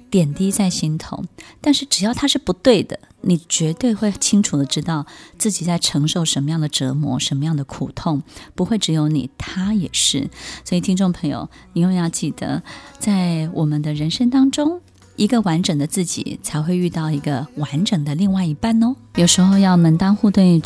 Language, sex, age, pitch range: Chinese, female, 20-39, 150-200 Hz